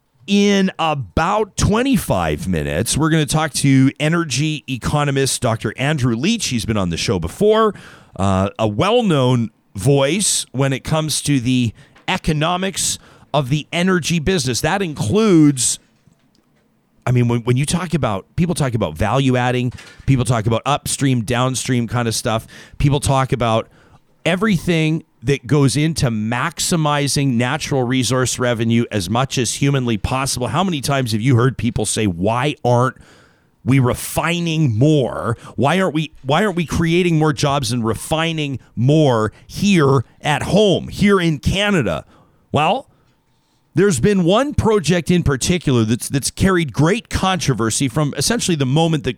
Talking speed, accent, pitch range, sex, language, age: 145 wpm, American, 125-165 Hz, male, English, 40-59